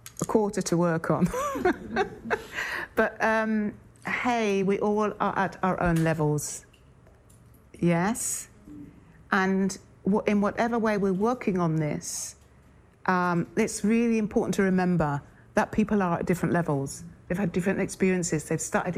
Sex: female